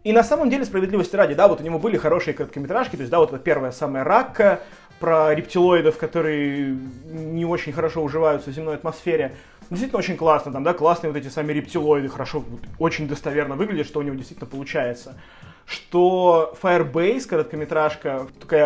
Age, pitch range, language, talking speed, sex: 20-39, 150-180 Hz, Russian, 175 wpm, male